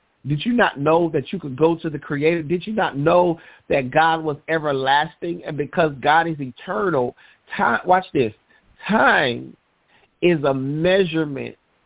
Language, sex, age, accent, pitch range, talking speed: English, male, 40-59, American, 145-180 Hz, 145 wpm